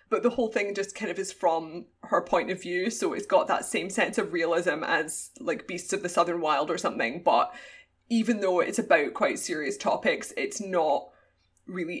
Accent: British